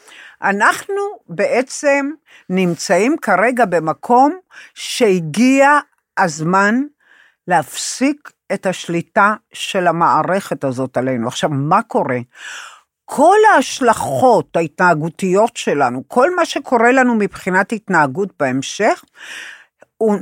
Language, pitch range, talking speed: Hebrew, 170-250 Hz, 85 wpm